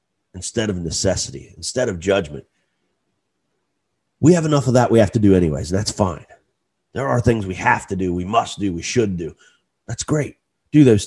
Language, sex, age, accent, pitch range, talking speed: English, male, 30-49, American, 95-125 Hz, 190 wpm